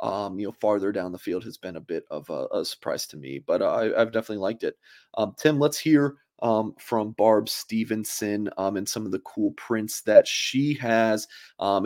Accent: American